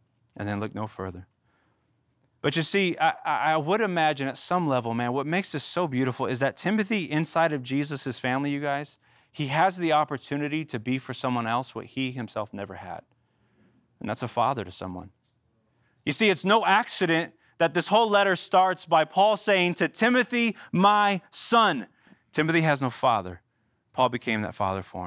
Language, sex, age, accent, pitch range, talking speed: English, male, 30-49, American, 120-165 Hz, 180 wpm